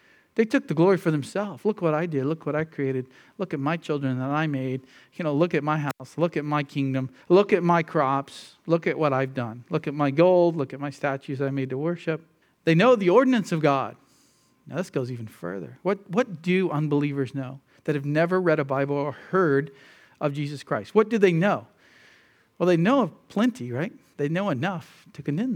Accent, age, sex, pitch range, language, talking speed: American, 40-59, male, 140-175 Hz, English, 220 wpm